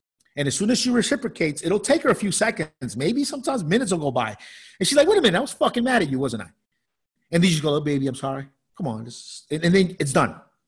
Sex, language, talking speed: male, English, 270 wpm